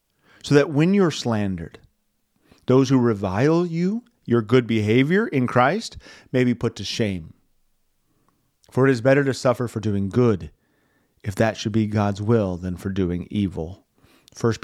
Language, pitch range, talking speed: English, 110-150 Hz, 160 wpm